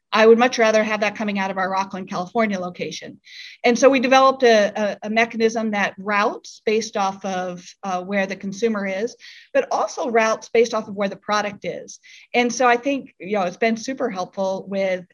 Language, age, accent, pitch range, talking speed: English, 40-59, American, 195-240 Hz, 200 wpm